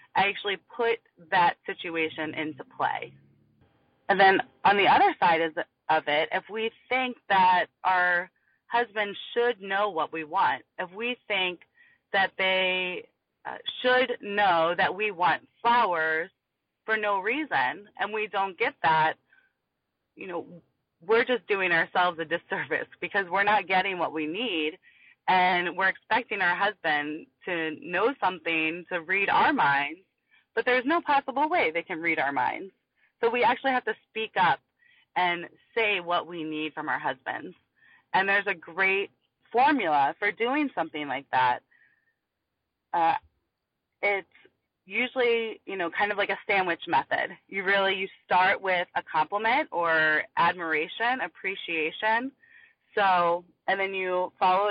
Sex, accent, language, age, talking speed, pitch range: female, American, English, 30-49, 145 wpm, 170-235 Hz